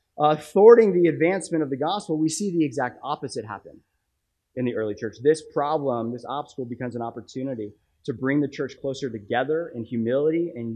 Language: English